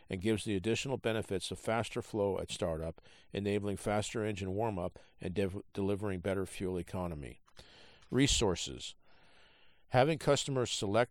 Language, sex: English, male